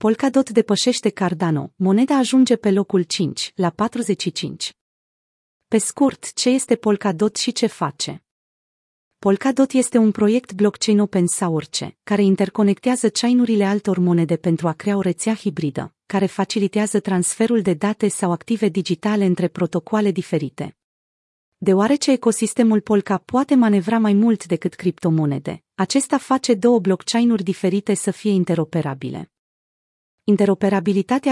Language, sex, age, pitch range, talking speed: Romanian, female, 30-49, 180-225 Hz, 125 wpm